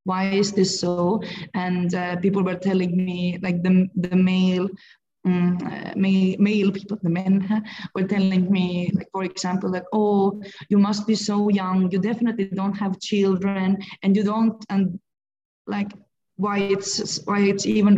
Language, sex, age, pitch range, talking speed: English, female, 20-39, 180-200 Hz, 165 wpm